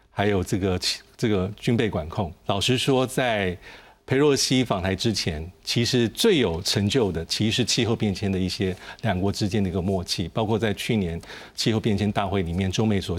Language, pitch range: Chinese, 95-125 Hz